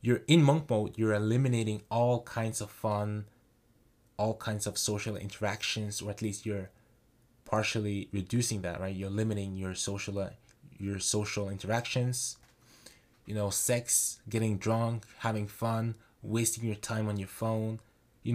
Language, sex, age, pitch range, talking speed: English, male, 20-39, 105-120 Hz, 140 wpm